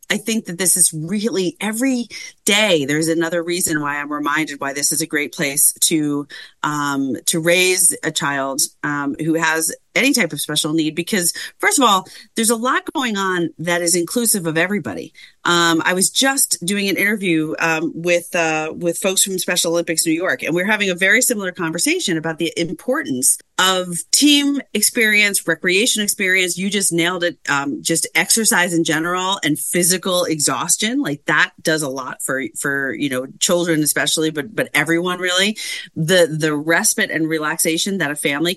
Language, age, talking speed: English, 30-49, 180 wpm